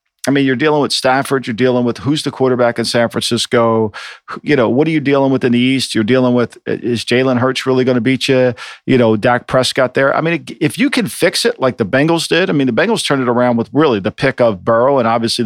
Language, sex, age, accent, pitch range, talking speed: English, male, 50-69, American, 115-135 Hz, 260 wpm